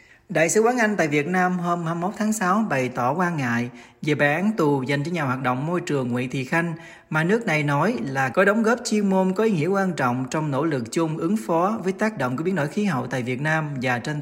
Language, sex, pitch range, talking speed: Vietnamese, male, 130-190 Hz, 265 wpm